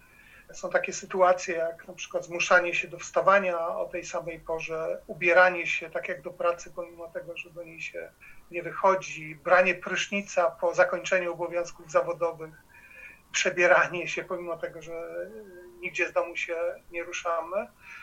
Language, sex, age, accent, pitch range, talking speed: Polish, male, 40-59, native, 170-185 Hz, 150 wpm